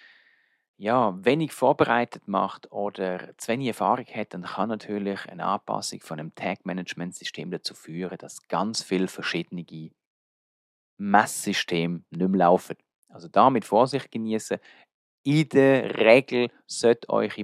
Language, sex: German, male